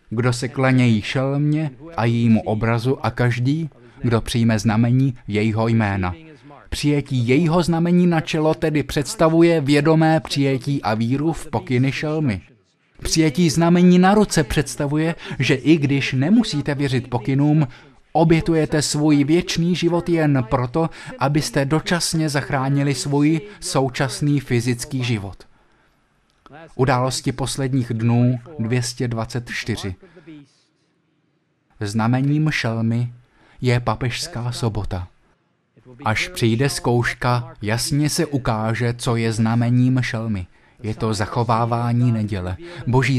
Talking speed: 105 wpm